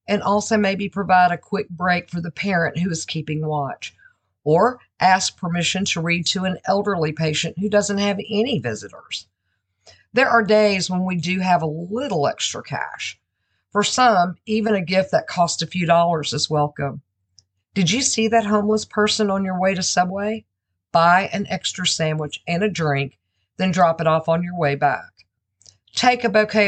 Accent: American